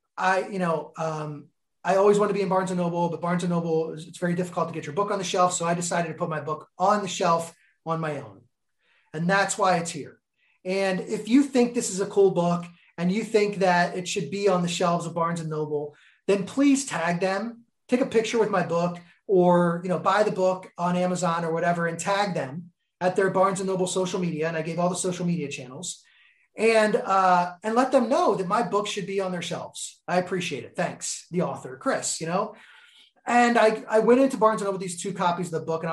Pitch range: 175-205 Hz